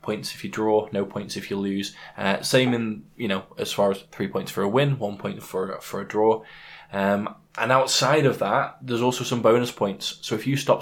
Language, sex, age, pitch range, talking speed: English, male, 20-39, 100-130 Hz, 235 wpm